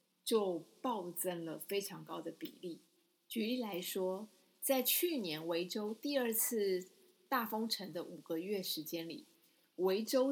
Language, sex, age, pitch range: Chinese, female, 20-39, 180-240 Hz